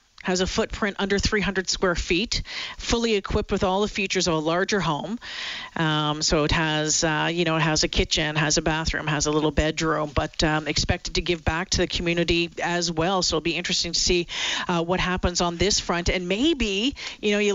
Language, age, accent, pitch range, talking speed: English, 50-69, American, 155-190 Hz, 215 wpm